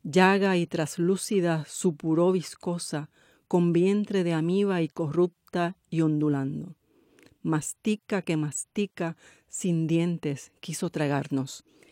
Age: 40-59